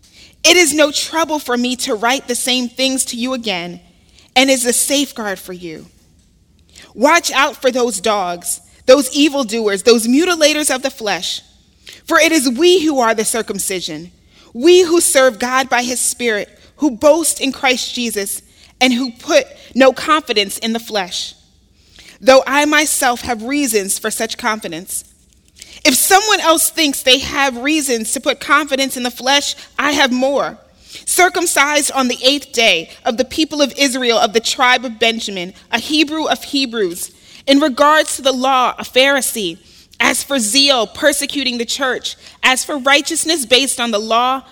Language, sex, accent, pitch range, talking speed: English, female, American, 220-285 Hz, 165 wpm